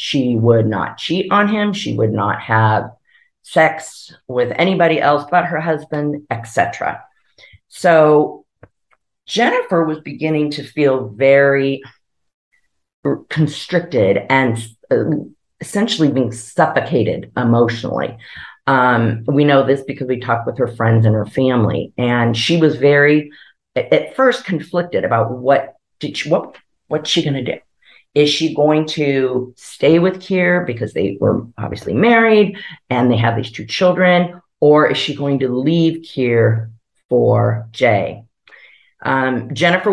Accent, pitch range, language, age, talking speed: American, 120-160 Hz, English, 40-59, 135 wpm